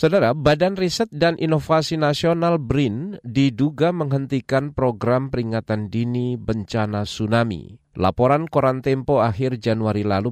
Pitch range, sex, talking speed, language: 105-145 Hz, male, 115 wpm, Indonesian